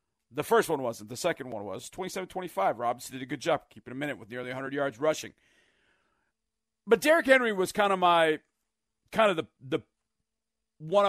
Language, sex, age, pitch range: English, male, 40-59, 155-220 Hz